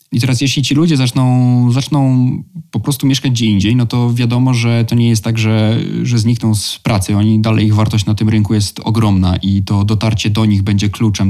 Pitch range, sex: 100-115 Hz, male